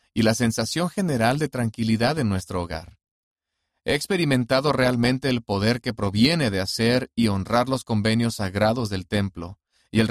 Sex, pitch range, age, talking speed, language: male, 100-125 Hz, 40-59, 160 wpm, Spanish